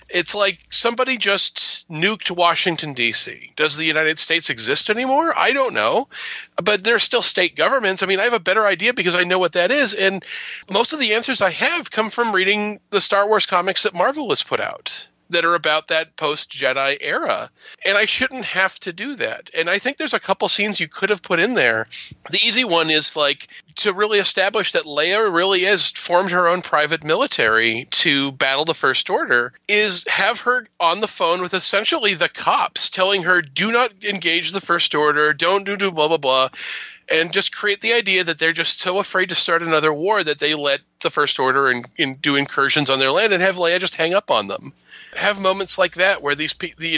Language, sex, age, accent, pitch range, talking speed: English, male, 40-59, American, 155-215 Hz, 210 wpm